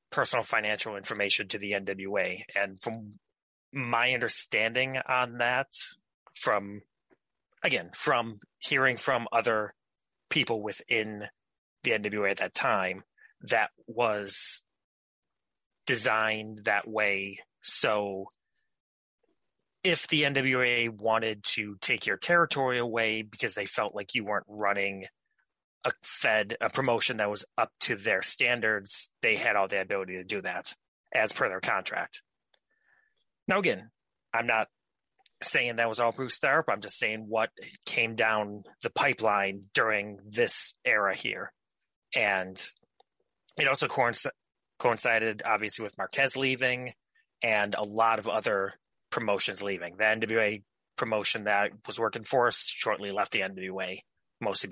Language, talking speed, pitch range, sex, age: English, 130 wpm, 100-120 Hz, male, 30-49